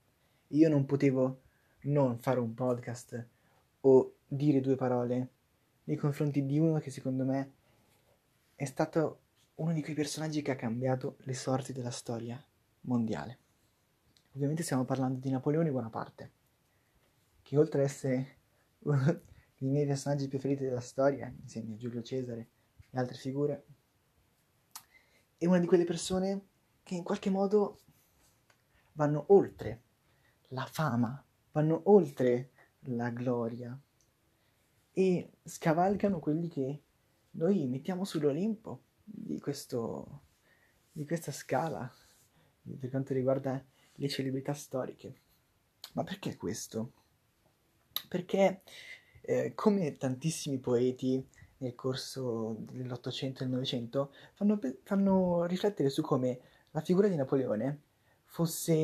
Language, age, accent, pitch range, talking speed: Italian, 20-39, native, 125-155 Hz, 115 wpm